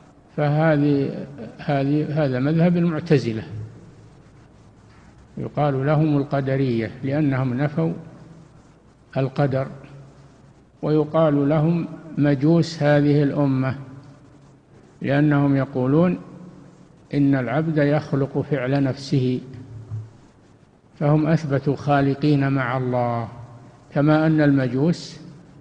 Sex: male